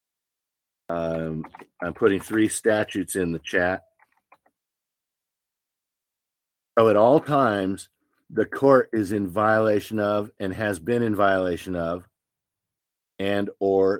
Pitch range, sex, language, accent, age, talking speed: 95-110 Hz, male, English, American, 50-69, 110 wpm